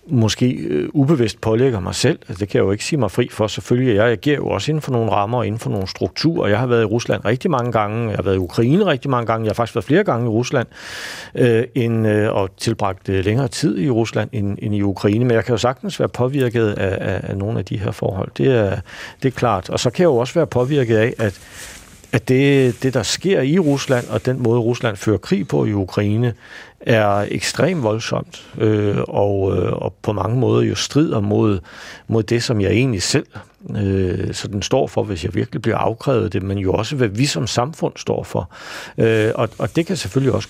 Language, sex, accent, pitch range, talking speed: Danish, male, native, 105-135 Hz, 235 wpm